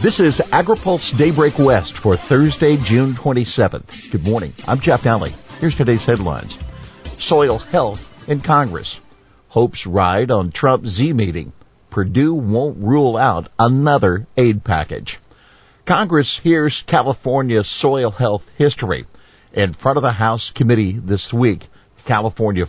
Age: 50-69